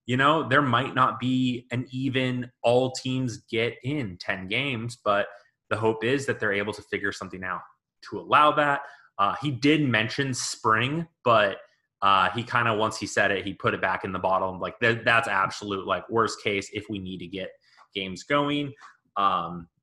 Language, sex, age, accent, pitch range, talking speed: English, male, 30-49, American, 100-125 Hz, 190 wpm